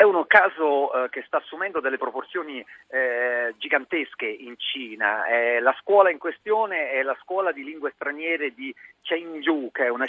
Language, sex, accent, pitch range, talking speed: Italian, male, native, 135-215 Hz, 170 wpm